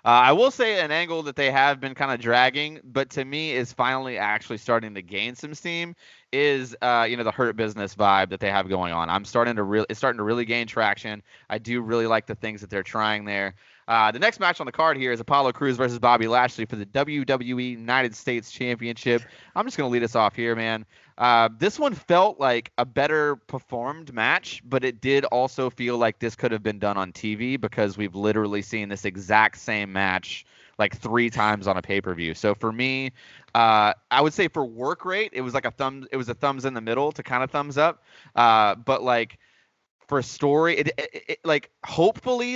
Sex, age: male, 20-39